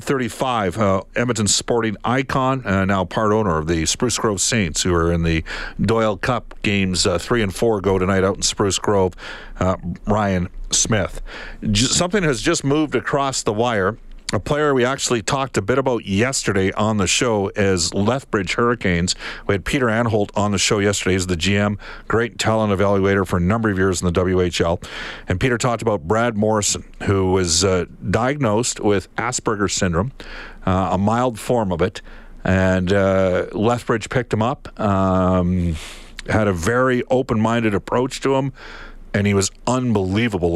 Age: 50-69